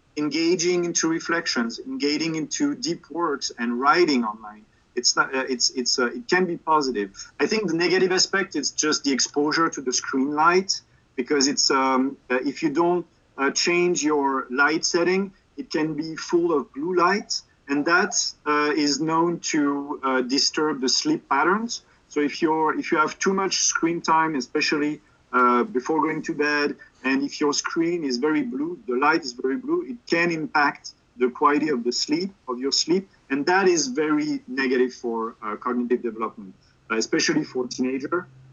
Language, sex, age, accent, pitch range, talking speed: French, male, 40-59, French, 130-170 Hz, 175 wpm